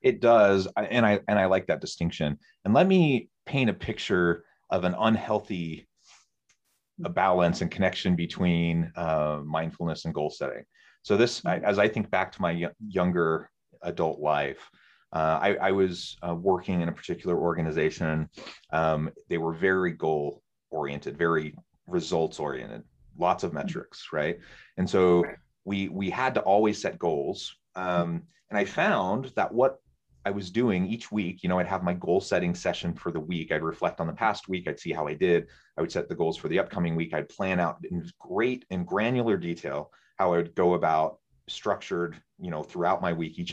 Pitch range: 85-100 Hz